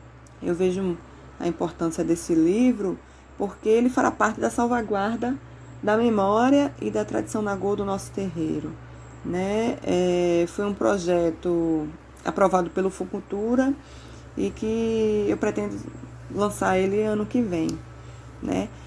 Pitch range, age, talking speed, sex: 160-225 Hz, 20-39, 125 wpm, female